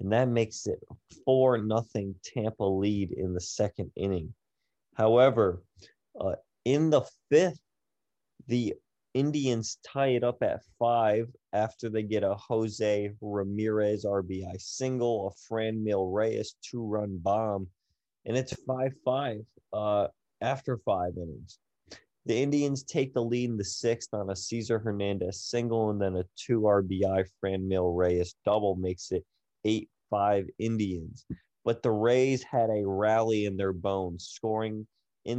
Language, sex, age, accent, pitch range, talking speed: English, male, 30-49, American, 100-115 Hz, 135 wpm